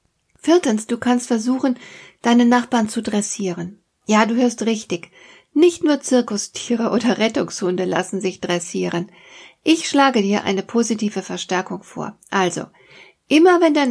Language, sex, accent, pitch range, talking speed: German, female, German, 185-240 Hz, 135 wpm